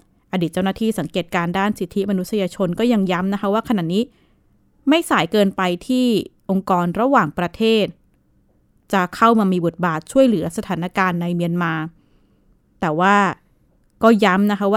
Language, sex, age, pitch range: Thai, female, 20-39, 175-220 Hz